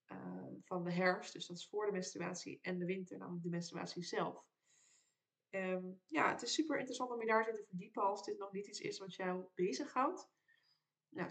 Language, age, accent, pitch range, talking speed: Dutch, 20-39, Dutch, 180-240 Hz, 205 wpm